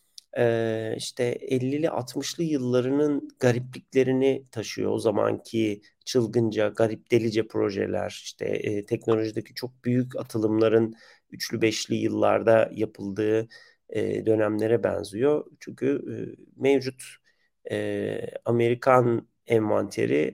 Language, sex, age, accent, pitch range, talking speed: Turkish, male, 40-59, native, 110-130 Hz, 80 wpm